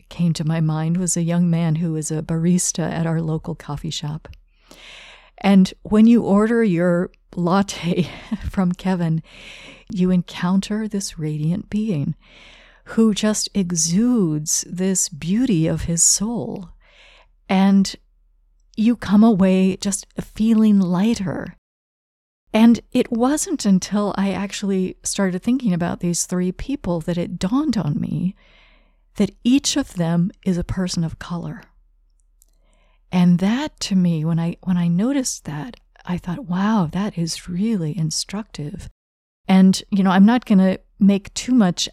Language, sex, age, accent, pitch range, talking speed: English, female, 50-69, American, 170-210 Hz, 140 wpm